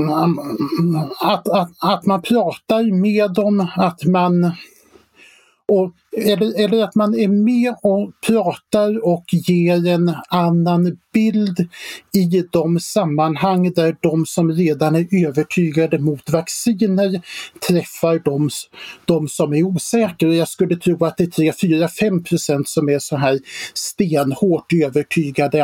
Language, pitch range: Swedish, 160-200 Hz